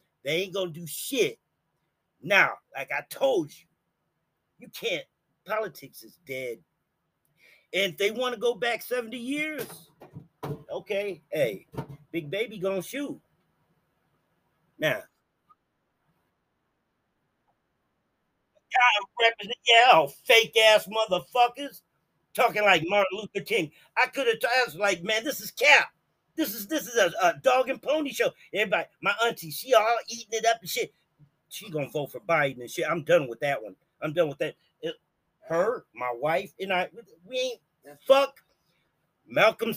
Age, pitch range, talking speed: 40-59, 170-255 Hz, 150 wpm